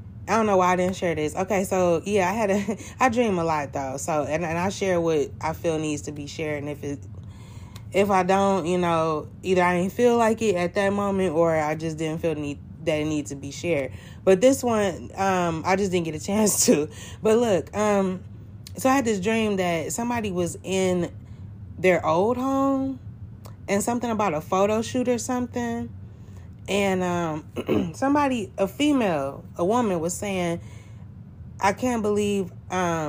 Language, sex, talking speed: English, female, 190 wpm